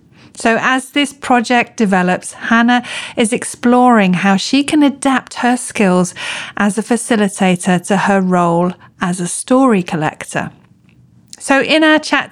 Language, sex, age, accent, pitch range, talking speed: English, female, 40-59, British, 195-255 Hz, 135 wpm